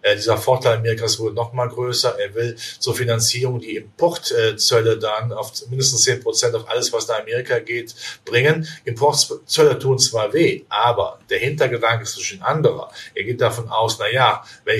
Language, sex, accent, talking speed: German, male, German, 170 wpm